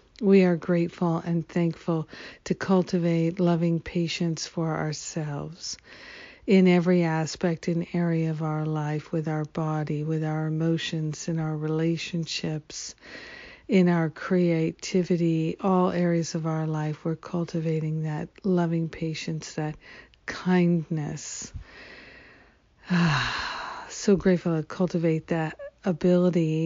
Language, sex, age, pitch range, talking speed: English, female, 60-79, 160-180 Hz, 110 wpm